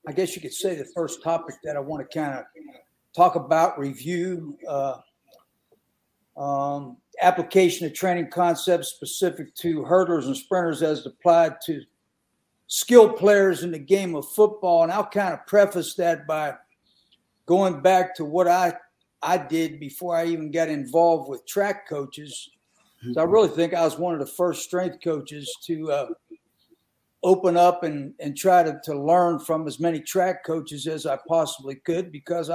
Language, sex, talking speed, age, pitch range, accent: English, male, 170 wpm, 50-69, 160-185 Hz, American